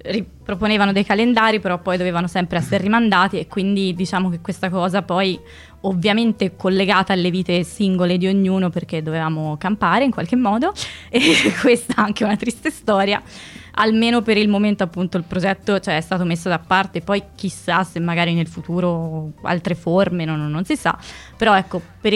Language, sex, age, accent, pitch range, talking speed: Italian, female, 20-39, native, 175-200 Hz, 165 wpm